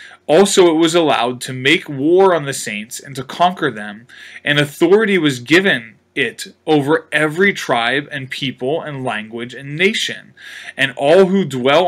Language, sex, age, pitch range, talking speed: English, male, 20-39, 120-150 Hz, 160 wpm